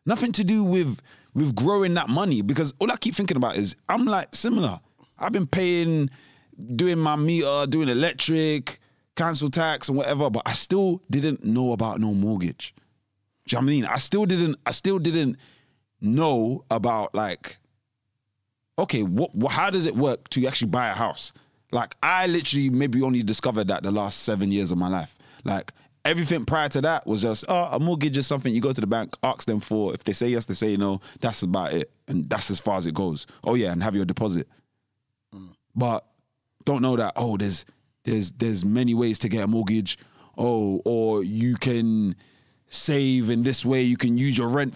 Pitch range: 110-150 Hz